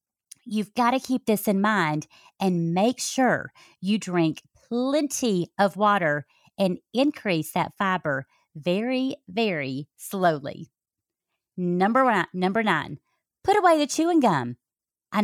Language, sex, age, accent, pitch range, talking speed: English, female, 40-59, American, 175-245 Hz, 125 wpm